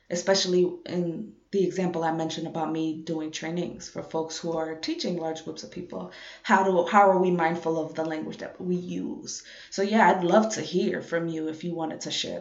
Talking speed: 215 wpm